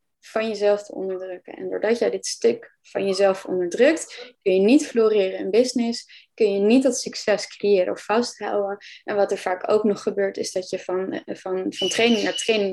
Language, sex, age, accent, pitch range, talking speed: Dutch, female, 20-39, Dutch, 200-260 Hz, 190 wpm